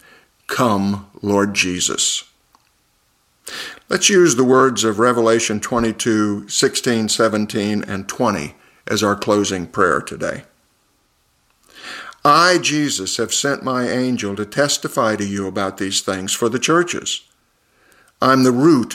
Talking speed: 120 wpm